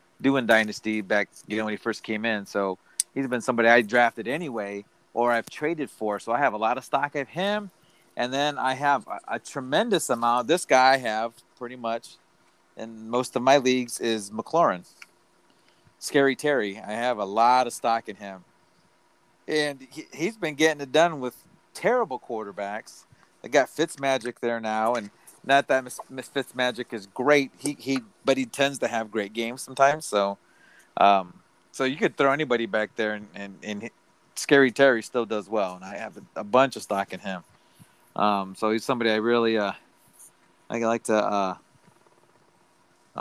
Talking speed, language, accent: 185 wpm, English, American